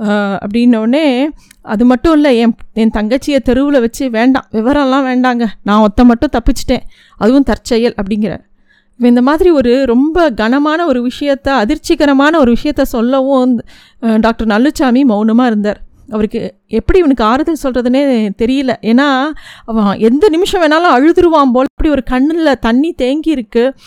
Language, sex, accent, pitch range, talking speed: Tamil, female, native, 225-275 Hz, 135 wpm